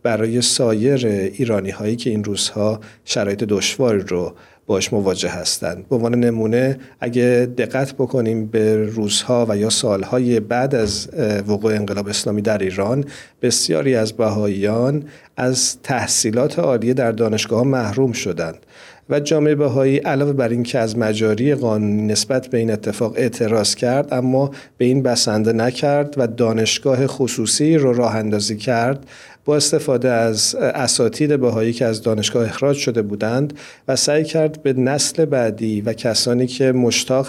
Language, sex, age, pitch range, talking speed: Persian, male, 50-69, 110-135 Hz, 145 wpm